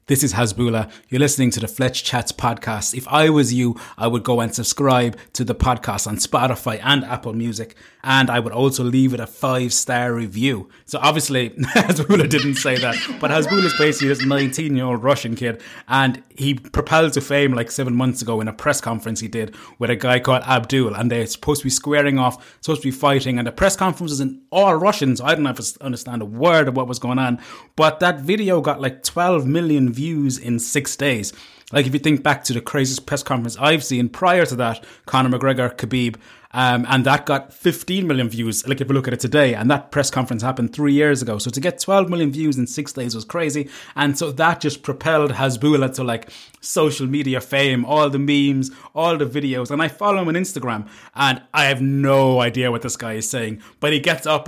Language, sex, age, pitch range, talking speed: English, male, 20-39, 125-145 Hz, 220 wpm